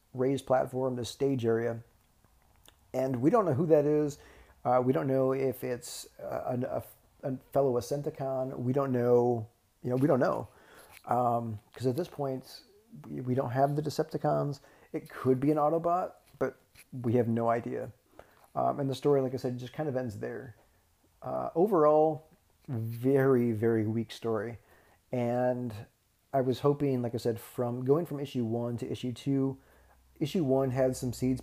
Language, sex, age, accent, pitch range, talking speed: English, male, 40-59, American, 120-140 Hz, 170 wpm